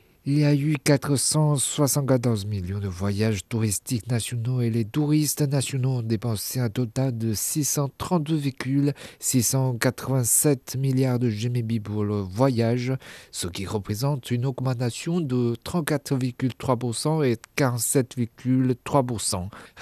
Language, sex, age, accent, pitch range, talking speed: French, male, 50-69, French, 110-140 Hz, 105 wpm